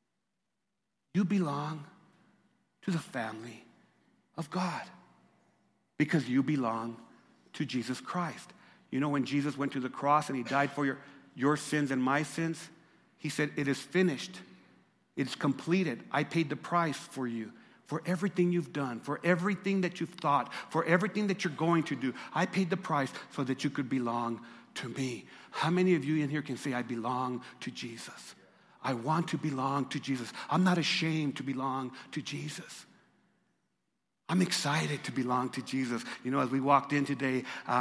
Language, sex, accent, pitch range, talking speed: English, male, American, 135-175 Hz, 175 wpm